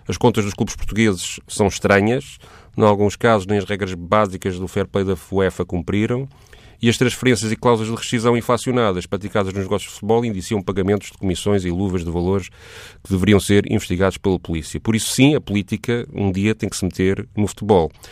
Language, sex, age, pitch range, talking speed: Portuguese, male, 30-49, 100-120 Hz, 200 wpm